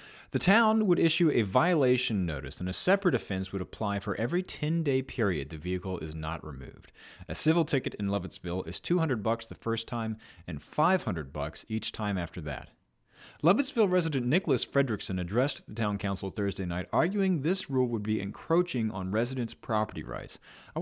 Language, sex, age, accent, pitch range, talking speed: English, male, 30-49, American, 100-155 Hz, 175 wpm